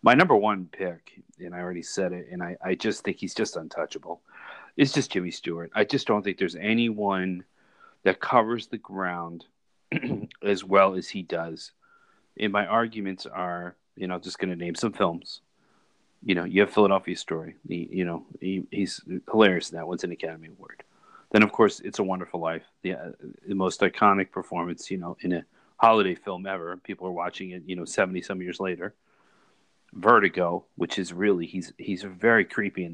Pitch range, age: 90-125 Hz, 40-59